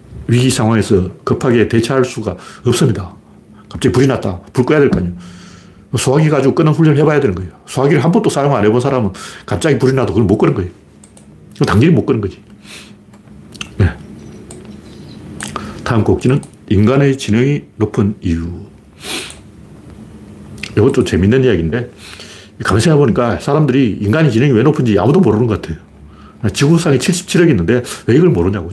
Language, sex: Korean, male